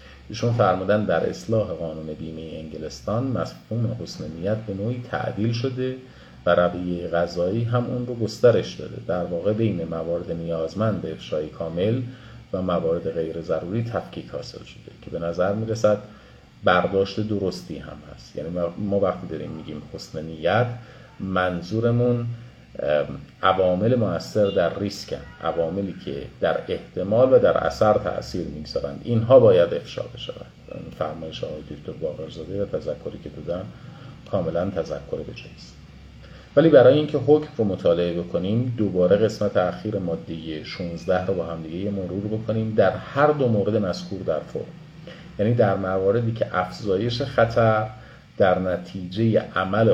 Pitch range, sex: 85-120 Hz, male